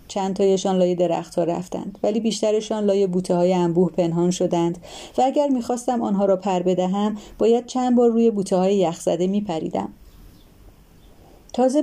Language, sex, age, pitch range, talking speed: Persian, female, 30-49, 180-240 Hz, 140 wpm